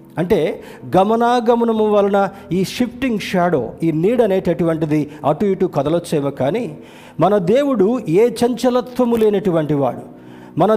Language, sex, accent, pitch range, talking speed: Telugu, male, native, 145-200 Hz, 115 wpm